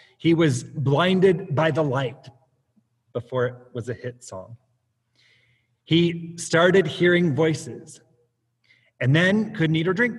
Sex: male